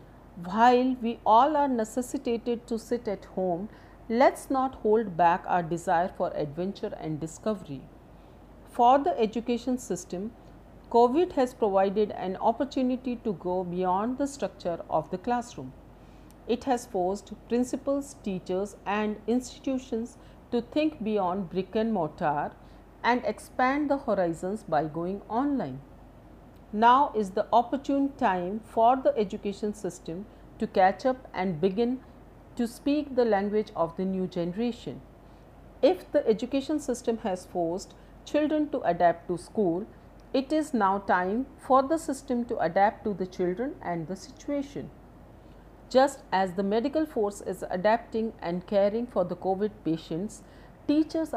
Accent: Indian